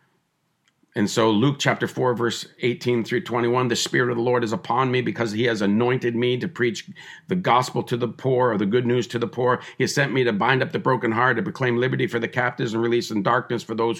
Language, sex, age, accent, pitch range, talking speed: English, male, 50-69, American, 115-130 Hz, 245 wpm